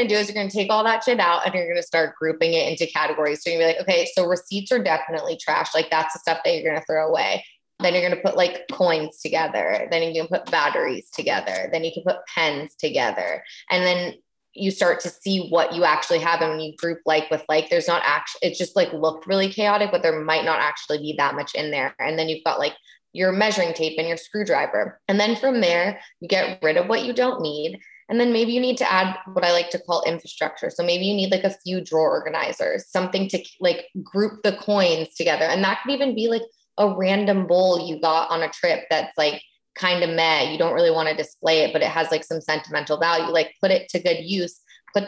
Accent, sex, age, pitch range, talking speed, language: American, female, 20-39, 160-195 Hz, 250 wpm, English